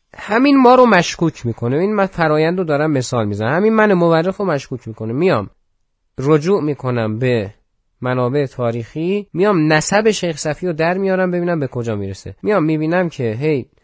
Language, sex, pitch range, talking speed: Persian, male, 115-170 Hz, 165 wpm